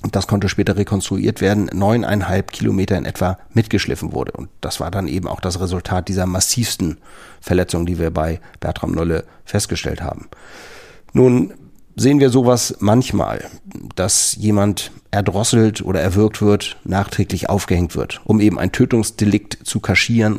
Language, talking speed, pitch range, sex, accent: German, 145 wpm, 90-105 Hz, male, German